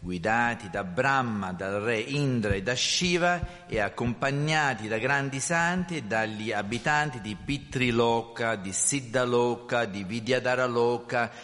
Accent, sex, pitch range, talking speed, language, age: native, male, 115-155 Hz, 120 wpm, Italian, 50-69